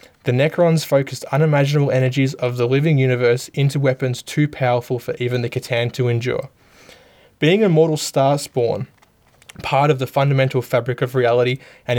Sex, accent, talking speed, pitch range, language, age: male, Australian, 160 wpm, 125-145 Hz, English, 20-39